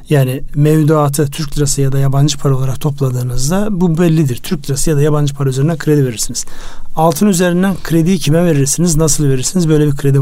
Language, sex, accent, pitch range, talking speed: Turkish, male, native, 135-160 Hz, 180 wpm